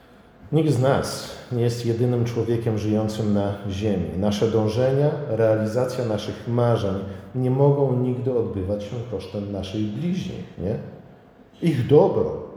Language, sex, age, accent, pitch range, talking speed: Polish, male, 50-69, native, 110-140 Hz, 125 wpm